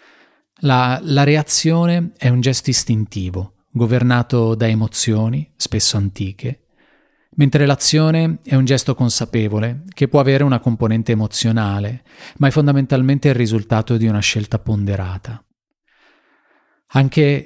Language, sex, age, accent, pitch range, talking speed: Italian, male, 30-49, native, 110-130 Hz, 115 wpm